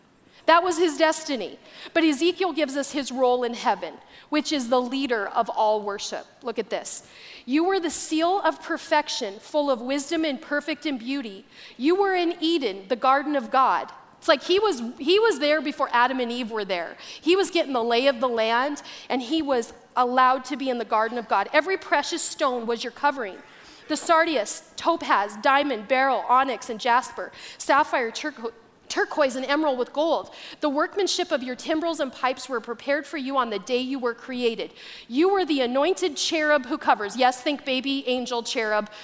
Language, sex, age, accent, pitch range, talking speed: English, female, 40-59, American, 240-305 Hz, 190 wpm